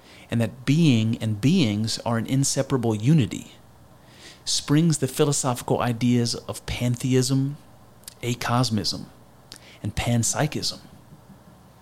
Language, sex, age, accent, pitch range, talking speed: English, male, 30-49, American, 115-140 Hz, 90 wpm